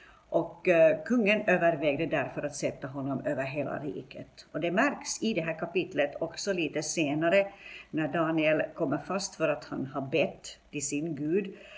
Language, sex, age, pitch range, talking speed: Swedish, female, 60-79, 150-185 Hz, 165 wpm